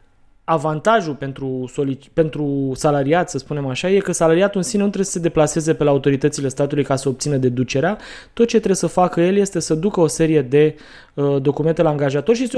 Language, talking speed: Romanian, 195 wpm